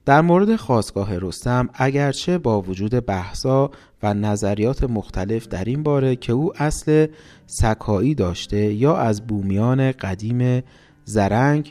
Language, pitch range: Persian, 100-140 Hz